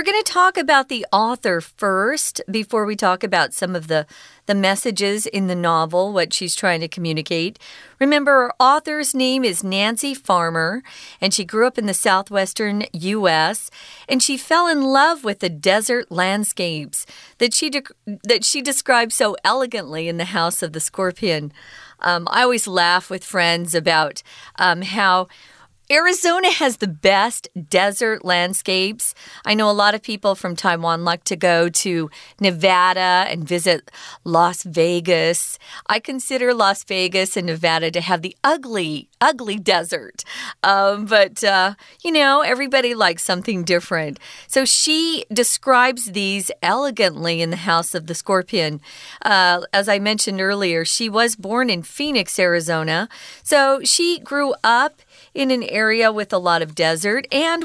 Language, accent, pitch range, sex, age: Chinese, American, 180-250 Hz, female, 40-59